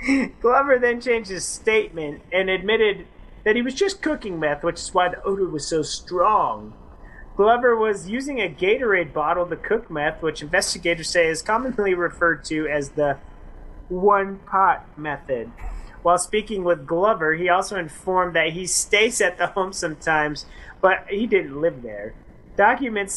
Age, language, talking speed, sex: 30-49, English, 160 wpm, male